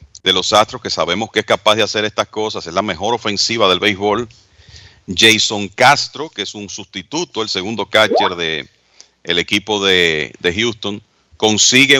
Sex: male